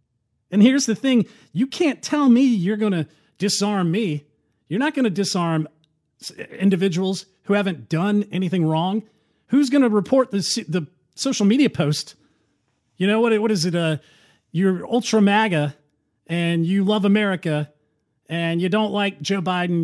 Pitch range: 150-210 Hz